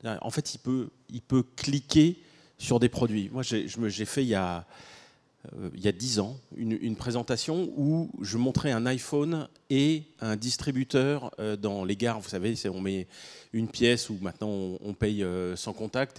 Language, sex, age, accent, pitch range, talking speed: French, male, 30-49, French, 110-140 Hz, 165 wpm